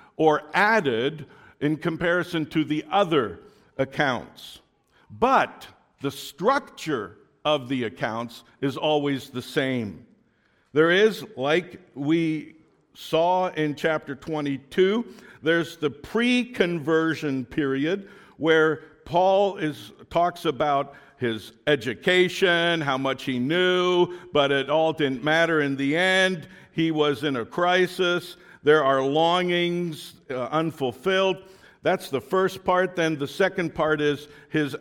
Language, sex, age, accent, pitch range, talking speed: English, male, 50-69, American, 140-185 Hz, 120 wpm